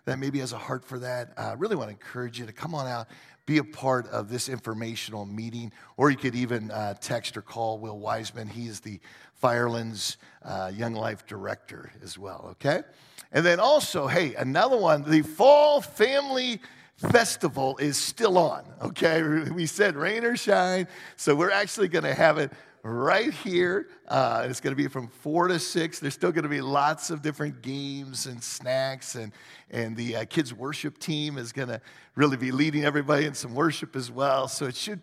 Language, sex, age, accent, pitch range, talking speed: English, male, 50-69, American, 120-155 Hz, 195 wpm